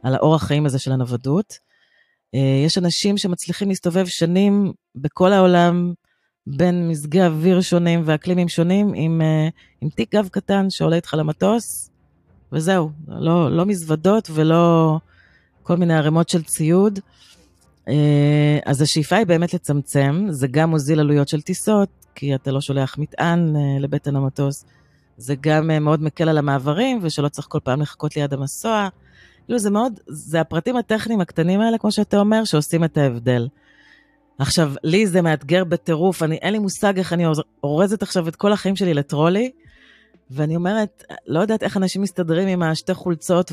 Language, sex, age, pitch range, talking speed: Hebrew, female, 30-49, 140-185 Hz, 150 wpm